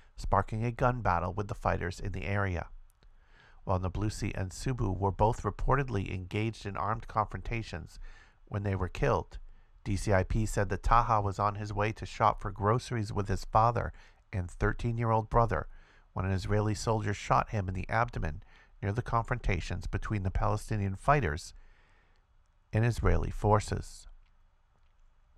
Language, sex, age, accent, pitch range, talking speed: English, male, 50-69, American, 95-110 Hz, 145 wpm